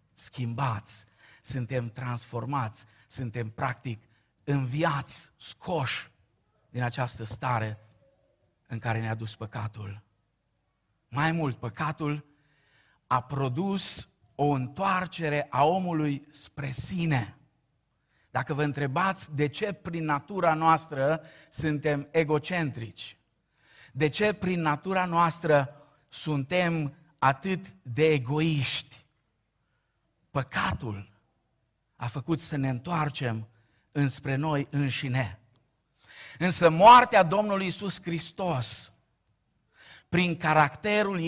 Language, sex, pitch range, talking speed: Romanian, male, 120-160 Hz, 90 wpm